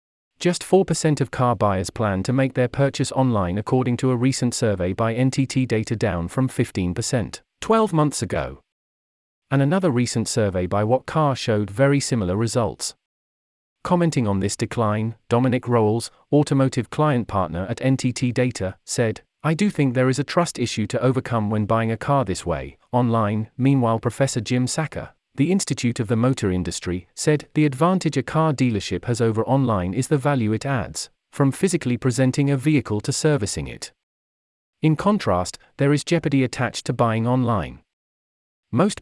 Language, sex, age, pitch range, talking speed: English, male, 40-59, 110-140 Hz, 165 wpm